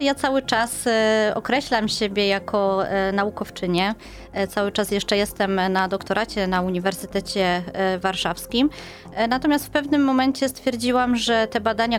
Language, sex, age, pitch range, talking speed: Polish, female, 20-39, 195-235 Hz, 120 wpm